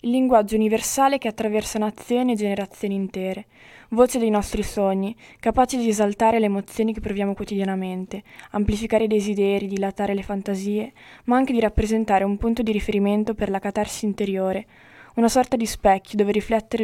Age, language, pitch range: 20-39, Italian, 195-225 Hz